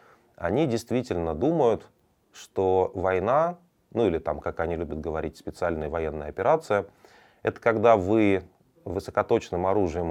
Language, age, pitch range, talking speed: Russian, 30-49, 85-105 Hz, 120 wpm